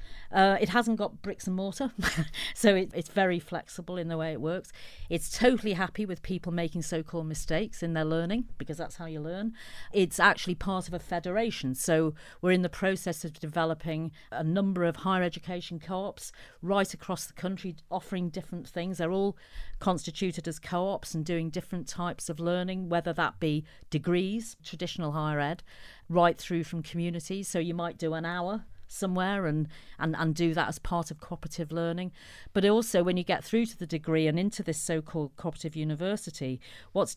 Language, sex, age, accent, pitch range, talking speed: English, female, 40-59, British, 160-190 Hz, 190 wpm